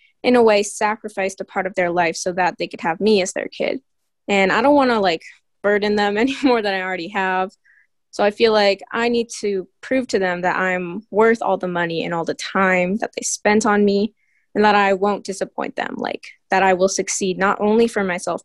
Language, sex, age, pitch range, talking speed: English, female, 20-39, 185-230 Hz, 235 wpm